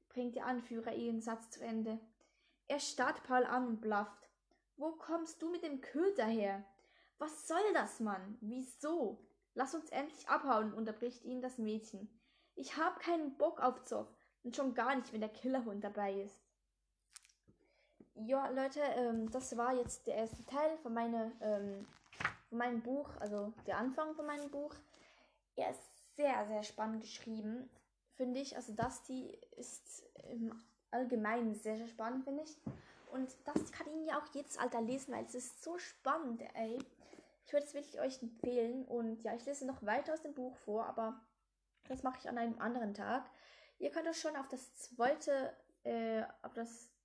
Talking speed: 170 wpm